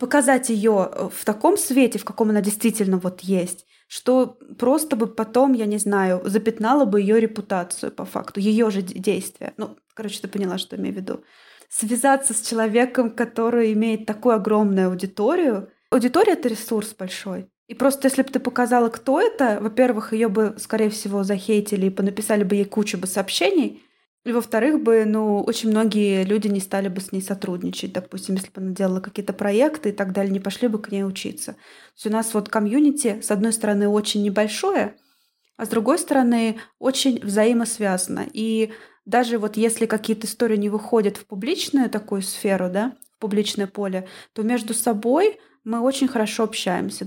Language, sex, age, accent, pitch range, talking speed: Russian, female, 20-39, native, 200-240 Hz, 175 wpm